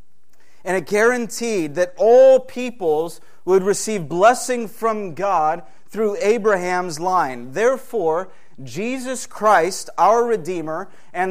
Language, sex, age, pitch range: English, male, 30-49, 180-225 Hz